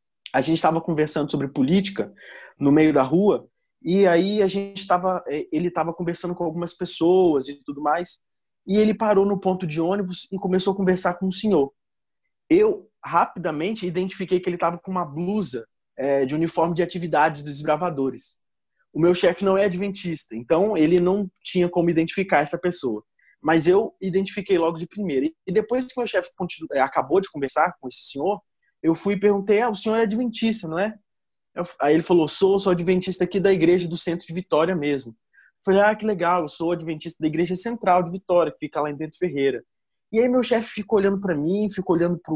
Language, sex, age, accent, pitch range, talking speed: Portuguese, male, 20-39, Brazilian, 165-205 Hz, 200 wpm